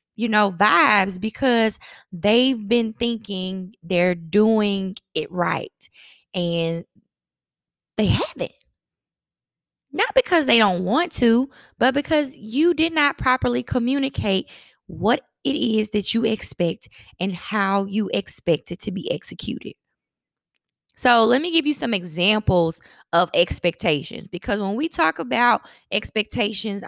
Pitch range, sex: 190-245 Hz, female